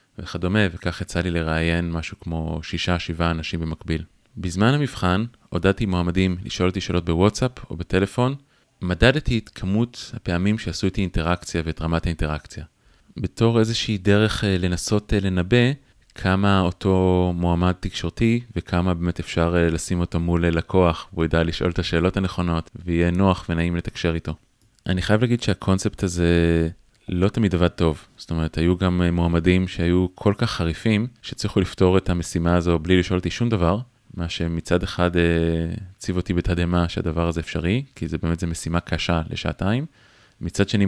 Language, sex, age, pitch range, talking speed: Hebrew, male, 20-39, 85-105 Hz, 150 wpm